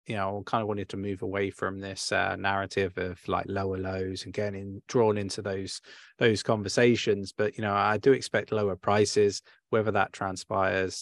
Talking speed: 185 wpm